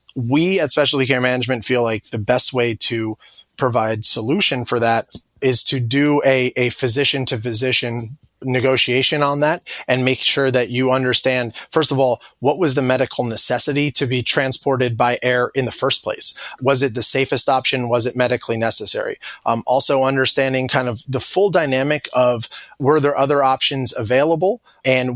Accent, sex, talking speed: American, male, 175 wpm